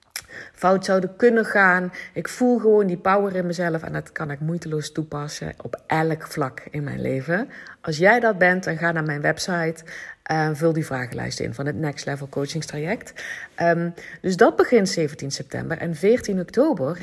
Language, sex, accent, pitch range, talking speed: Dutch, female, Dutch, 165-210 Hz, 175 wpm